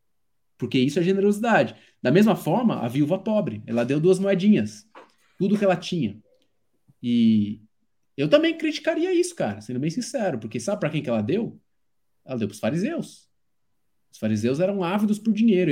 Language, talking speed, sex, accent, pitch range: Portuguese, 170 wpm, male, Brazilian, 115-180 Hz